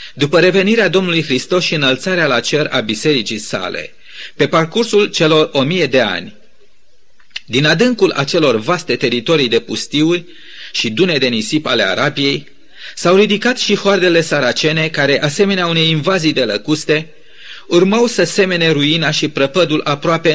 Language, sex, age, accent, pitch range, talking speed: Romanian, male, 30-49, native, 150-190 Hz, 145 wpm